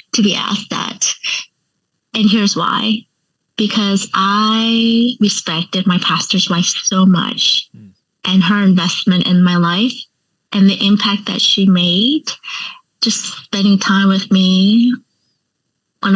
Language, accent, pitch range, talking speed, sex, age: English, American, 190-220 Hz, 125 wpm, female, 20-39